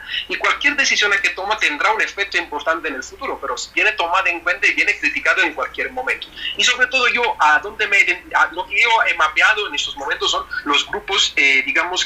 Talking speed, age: 220 wpm, 40-59